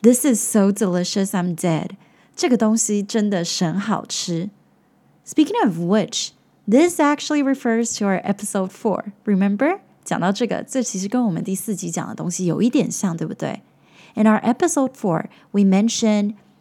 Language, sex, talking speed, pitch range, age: English, female, 85 wpm, 185-235 Hz, 20-39